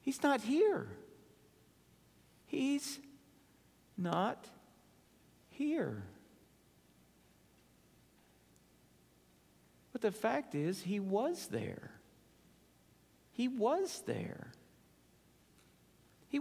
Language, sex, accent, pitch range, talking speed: English, male, American, 180-240 Hz, 60 wpm